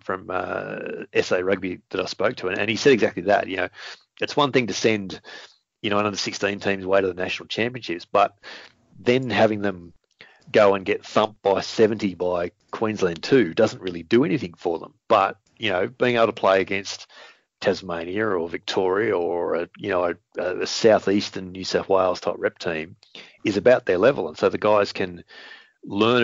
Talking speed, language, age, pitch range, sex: 190 wpm, English, 30-49, 90-115 Hz, male